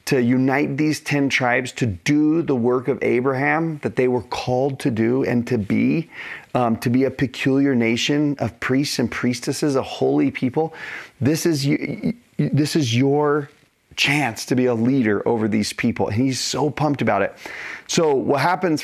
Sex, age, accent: male, 30-49, American